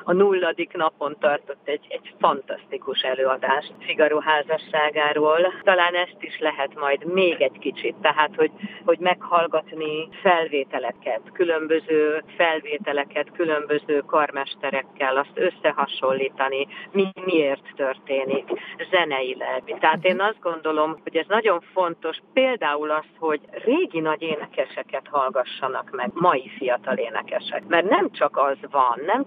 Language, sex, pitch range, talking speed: Hungarian, female, 140-185 Hz, 115 wpm